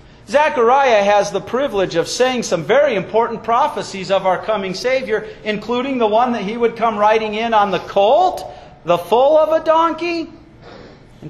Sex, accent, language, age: male, American, English, 40-59